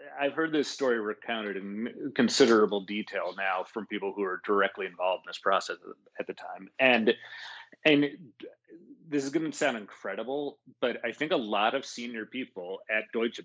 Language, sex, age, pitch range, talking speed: English, male, 30-49, 100-130 Hz, 175 wpm